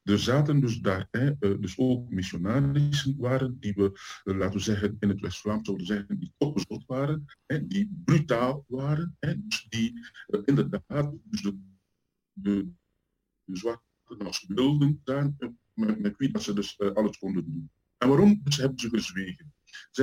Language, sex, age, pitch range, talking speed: Dutch, male, 50-69, 100-150 Hz, 170 wpm